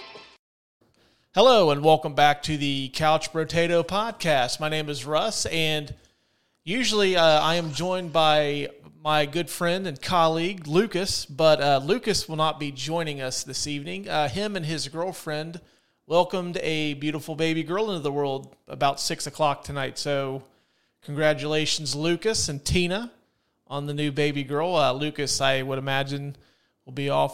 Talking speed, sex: 155 wpm, male